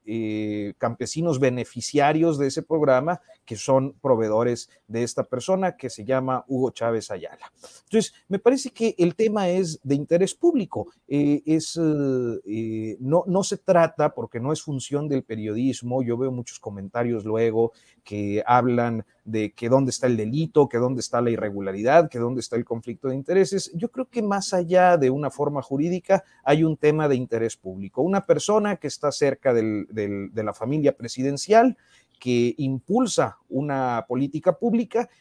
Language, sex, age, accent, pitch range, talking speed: Spanish, male, 40-59, Mexican, 115-160 Hz, 165 wpm